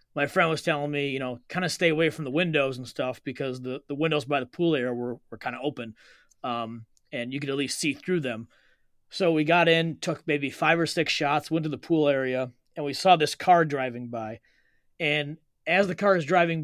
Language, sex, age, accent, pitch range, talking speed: English, male, 30-49, American, 135-170 Hz, 240 wpm